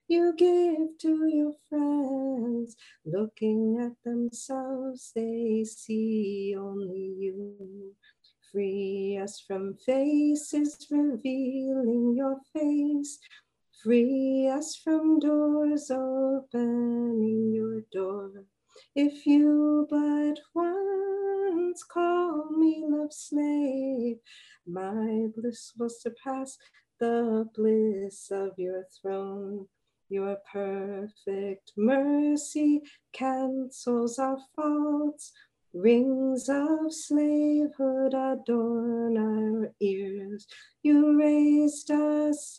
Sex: female